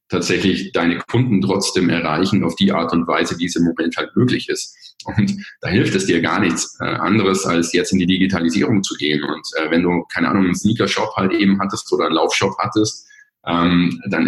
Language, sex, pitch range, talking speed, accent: German, male, 90-105 Hz, 200 wpm, German